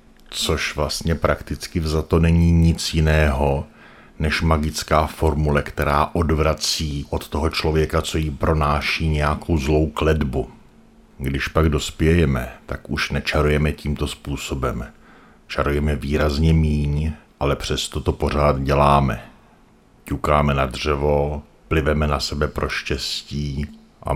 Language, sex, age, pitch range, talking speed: Czech, male, 50-69, 75-80 Hz, 115 wpm